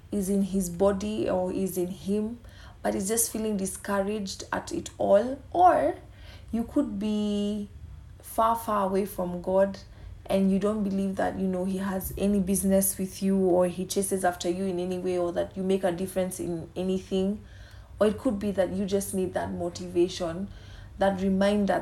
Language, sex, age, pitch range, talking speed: English, female, 30-49, 170-200 Hz, 180 wpm